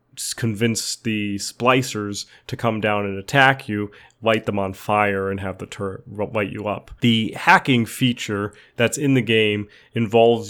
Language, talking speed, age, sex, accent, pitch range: English, 160 wpm, 30-49, male, American, 105-120 Hz